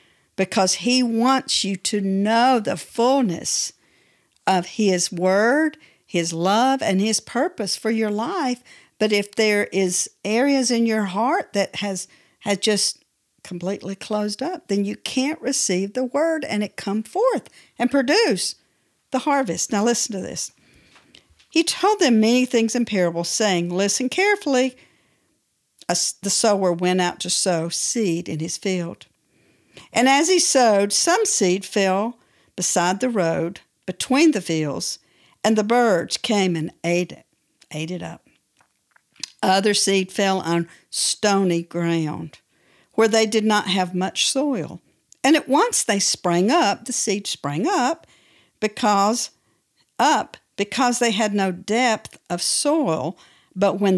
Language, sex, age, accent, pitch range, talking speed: English, female, 50-69, American, 185-245 Hz, 145 wpm